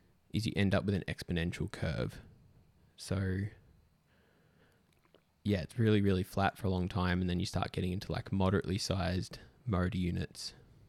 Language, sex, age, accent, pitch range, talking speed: English, male, 10-29, Australian, 90-110 Hz, 160 wpm